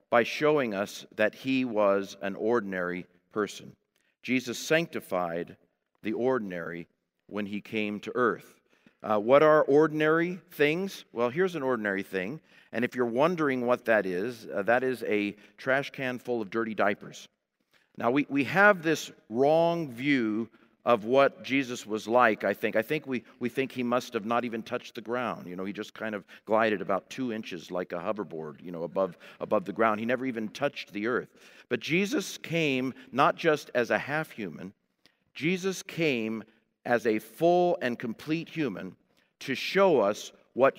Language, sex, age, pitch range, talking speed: English, male, 50-69, 110-145 Hz, 170 wpm